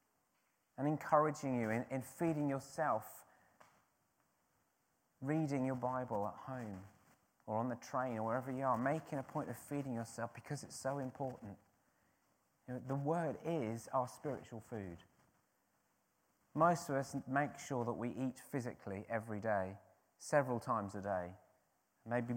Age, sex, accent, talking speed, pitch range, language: 30-49, male, British, 140 wpm, 120-160 Hz, English